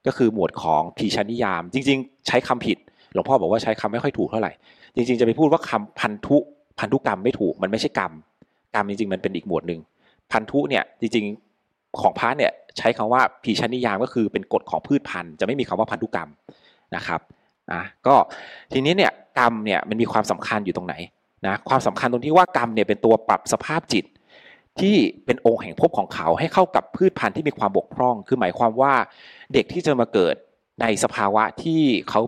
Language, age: Thai, 30-49